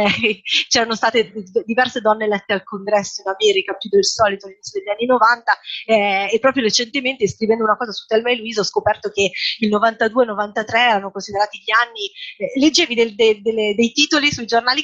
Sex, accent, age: female, native, 30-49